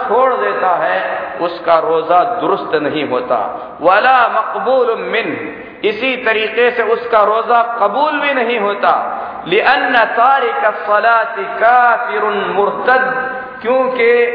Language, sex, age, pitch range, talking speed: Hindi, male, 50-69, 205-255 Hz, 90 wpm